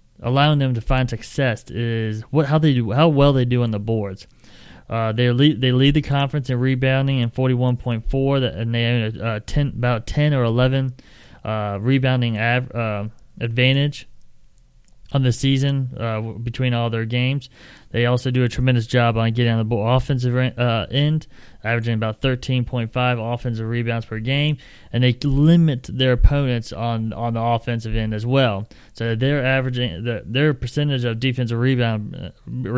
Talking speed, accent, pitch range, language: 180 wpm, American, 115-130 Hz, English